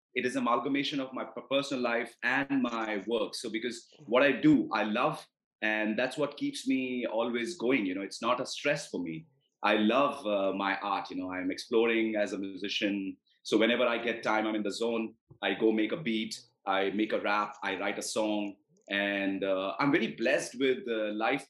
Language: English